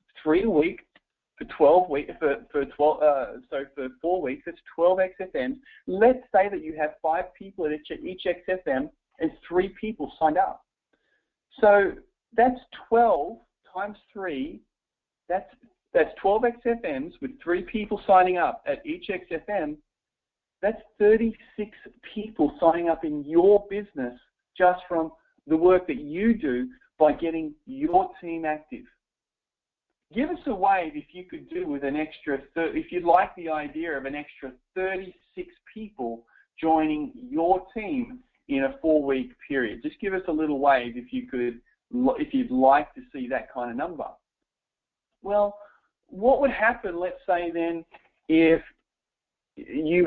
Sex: male